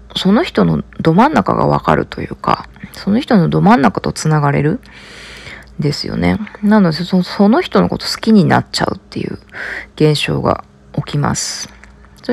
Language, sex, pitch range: Japanese, female, 155-225 Hz